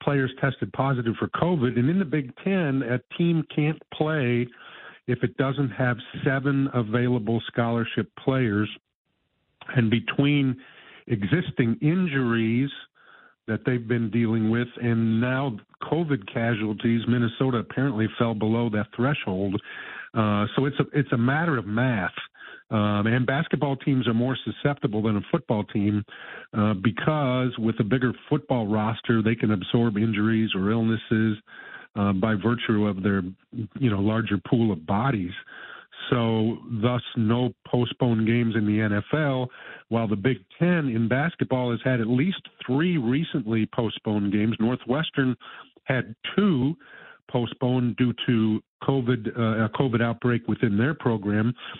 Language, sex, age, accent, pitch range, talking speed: English, male, 50-69, American, 110-135 Hz, 140 wpm